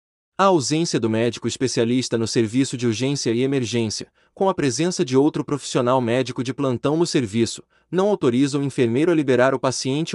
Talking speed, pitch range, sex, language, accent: 175 wpm, 120-160 Hz, male, Portuguese, Brazilian